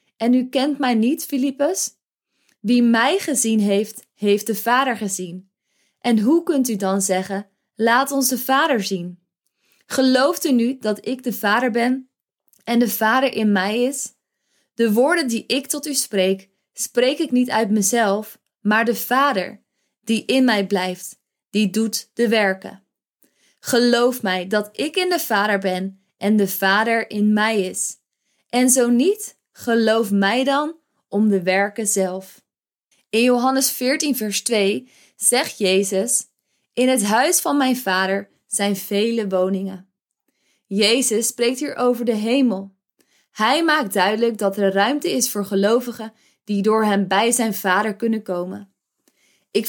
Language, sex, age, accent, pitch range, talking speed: Dutch, female, 20-39, Dutch, 200-255 Hz, 150 wpm